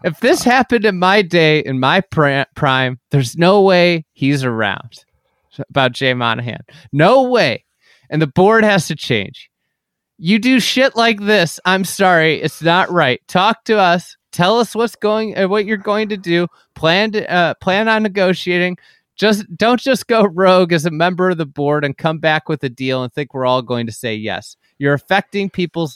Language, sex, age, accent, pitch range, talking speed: English, male, 30-49, American, 130-185 Hz, 190 wpm